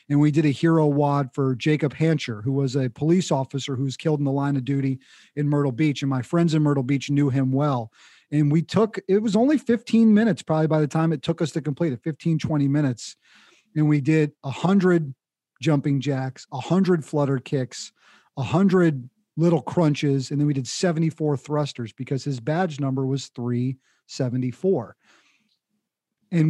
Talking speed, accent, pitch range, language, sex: 180 wpm, American, 145-175 Hz, English, male